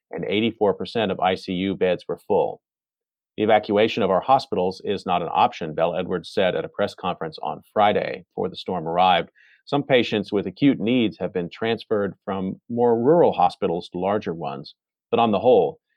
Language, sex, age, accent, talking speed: English, male, 40-59, American, 180 wpm